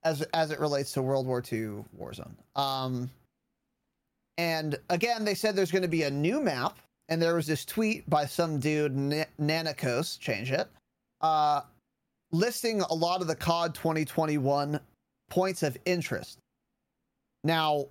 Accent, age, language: American, 30-49, English